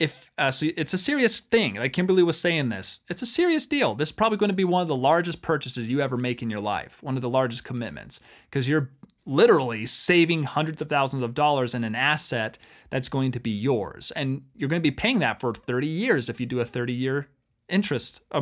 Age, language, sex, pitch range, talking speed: 30-49, English, male, 125-180 Hz, 230 wpm